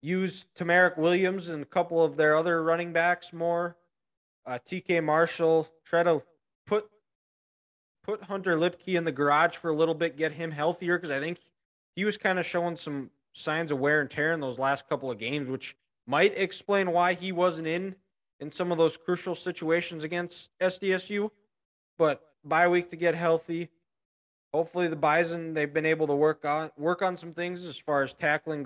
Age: 20-39